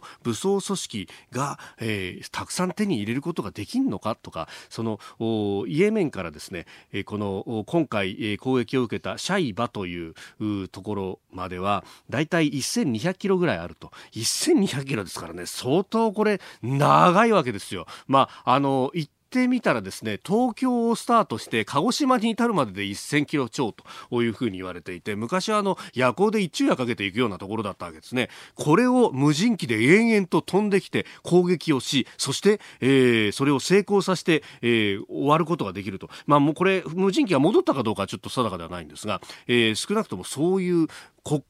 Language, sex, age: Japanese, male, 40-59